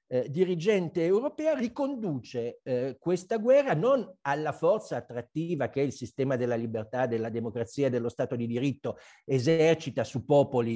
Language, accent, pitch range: Italian, native, 115-165 Hz